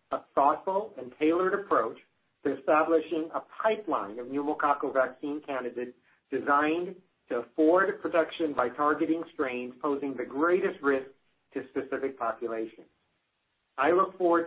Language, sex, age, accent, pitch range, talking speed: English, male, 50-69, American, 130-160 Hz, 125 wpm